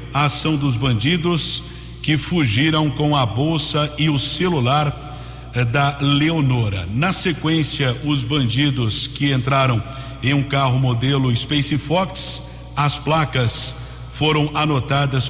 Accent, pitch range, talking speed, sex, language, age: Brazilian, 130-150 Hz, 120 wpm, male, Portuguese, 60-79